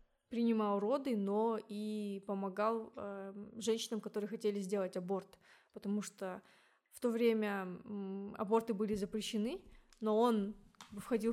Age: 20-39